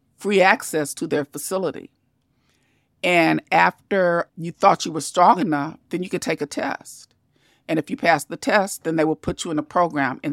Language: English